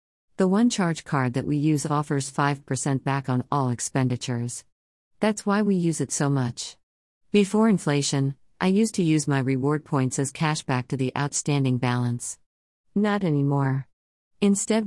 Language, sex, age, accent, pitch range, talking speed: English, female, 50-69, American, 130-160 Hz, 155 wpm